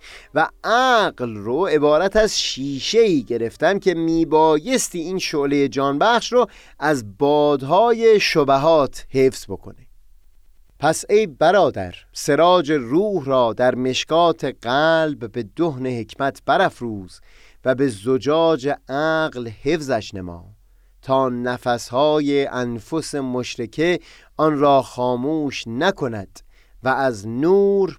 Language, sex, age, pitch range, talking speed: Persian, male, 30-49, 125-175 Hz, 105 wpm